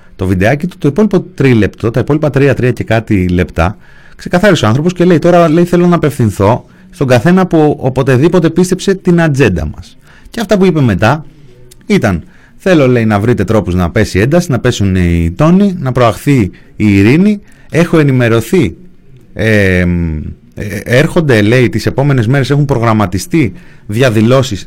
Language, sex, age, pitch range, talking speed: Greek, male, 30-49, 105-150 Hz, 160 wpm